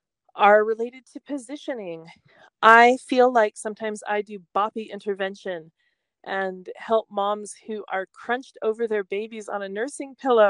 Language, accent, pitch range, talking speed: English, American, 185-235 Hz, 145 wpm